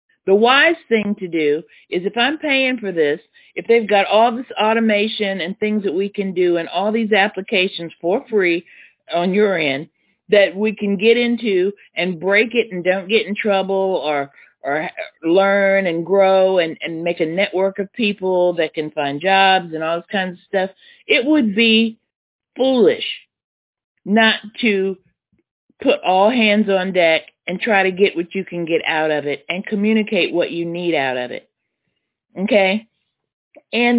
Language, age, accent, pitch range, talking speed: English, 50-69, American, 175-220 Hz, 175 wpm